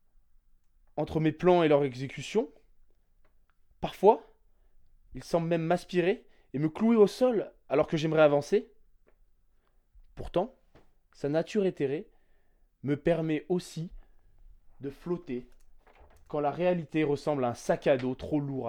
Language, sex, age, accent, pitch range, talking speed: French, male, 20-39, French, 110-180 Hz, 130 wpm